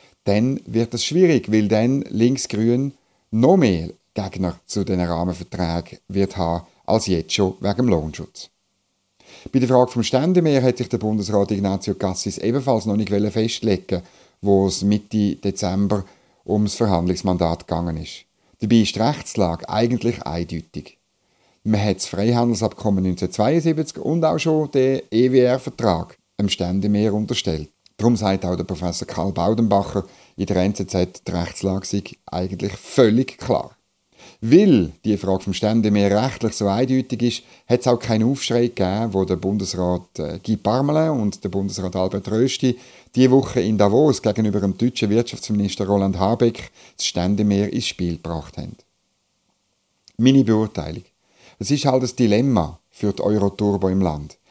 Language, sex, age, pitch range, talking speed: German, male, 50-69, 95-120 Hz, 145 wpm